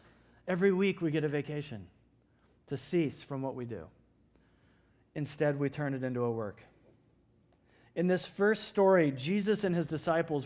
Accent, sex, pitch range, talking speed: American, male, 140-175 Hz, 155 wpm